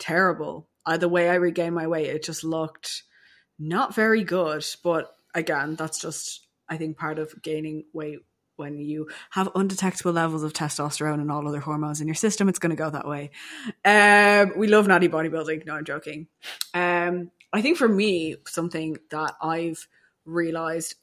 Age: 20-39